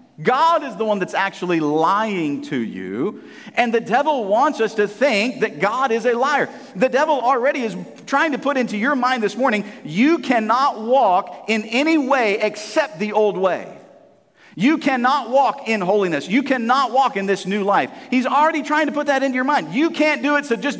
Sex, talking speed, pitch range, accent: male, 200 wpm, 205-275 Hz, American